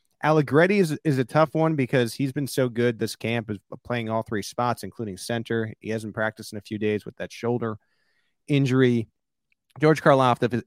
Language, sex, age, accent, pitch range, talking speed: English, male, 30-49, American, 110-130 Hz, 185 wpm